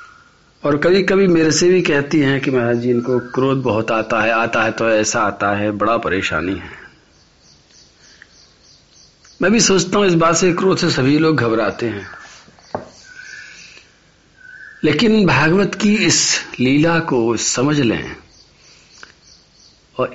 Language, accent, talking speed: Hindi, native, 140 wpm